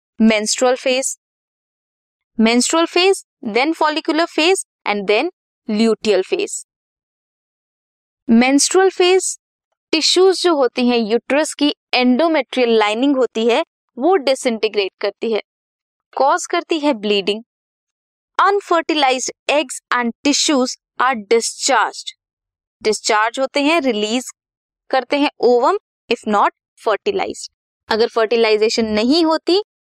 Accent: native